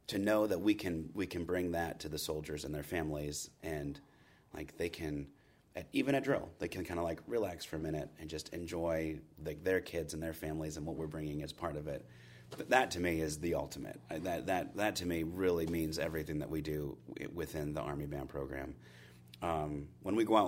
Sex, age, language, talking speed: male, 30-49, English, 225 wpm